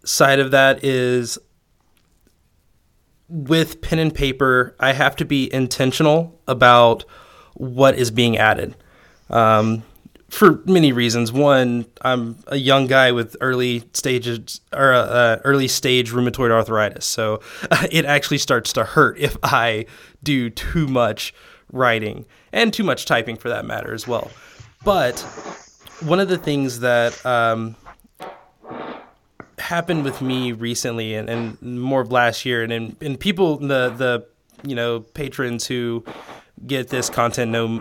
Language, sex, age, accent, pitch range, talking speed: English, male, 20-39, American, 120-145 Hz, 145 wpm